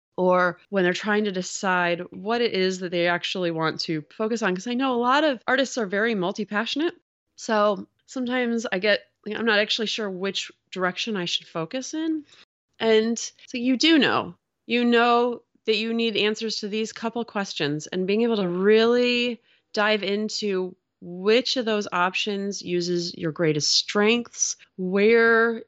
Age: 20-39